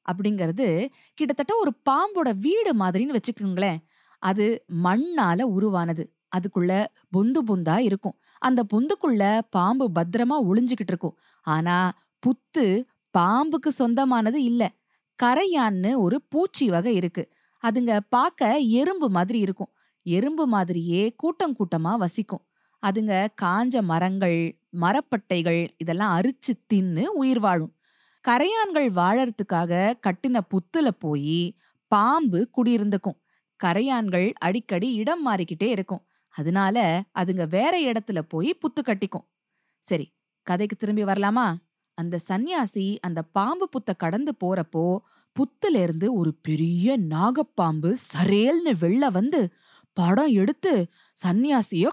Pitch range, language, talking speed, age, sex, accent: 180-255 Hz, Tamil, 60 wpm, 20-39, female, native